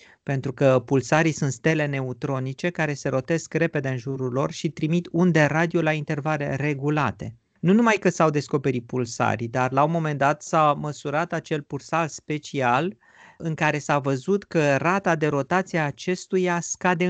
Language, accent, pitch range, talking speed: Romanian, native, 135-165 Hz, 165 wpm